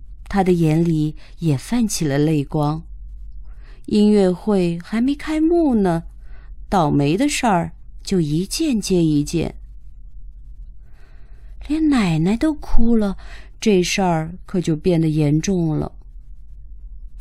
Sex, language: female, Chinese